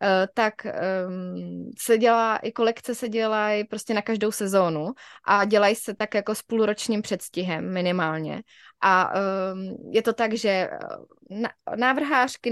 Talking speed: 130 wpm